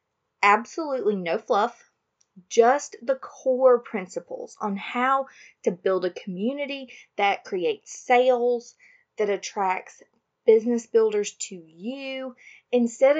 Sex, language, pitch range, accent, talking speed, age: female, English, 195-265 Hz, American, 105 wpm, 30-49